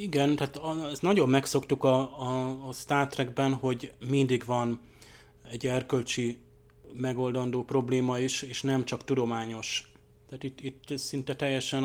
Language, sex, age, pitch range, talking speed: Hungarian, male, 30-49, 120-135 Hz, 135 wpm